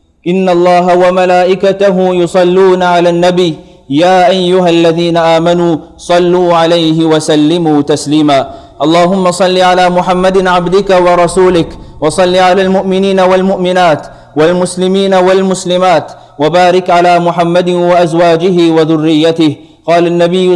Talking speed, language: 95 wpm, English